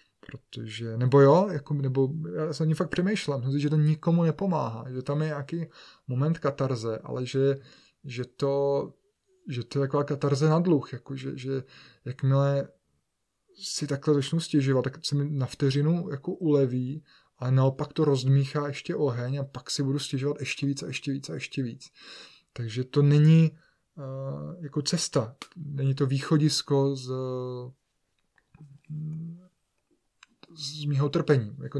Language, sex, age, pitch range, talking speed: Czech, male, 20-39, 125-145 Hz, 155 wpm